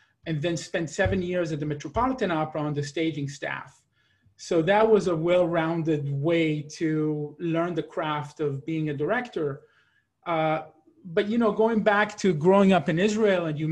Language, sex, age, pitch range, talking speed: English, male, 30-49, 145-165 Hz, 175 wpm